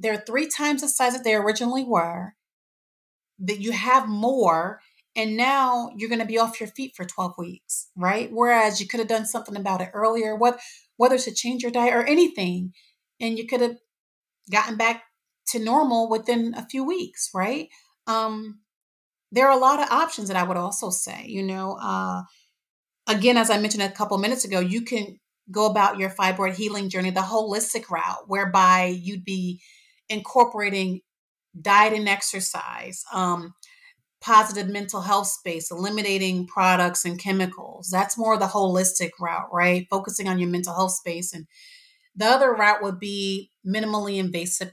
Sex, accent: female, American